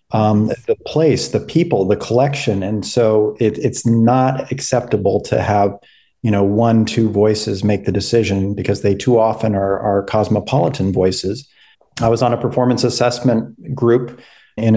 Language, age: English, 40-59